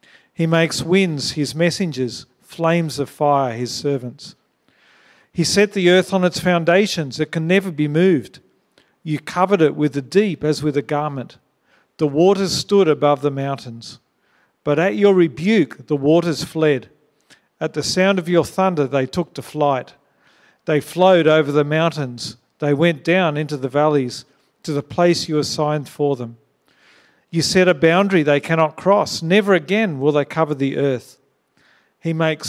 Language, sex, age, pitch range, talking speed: English, male, 50-69, 140-175 Hz, 165 wpm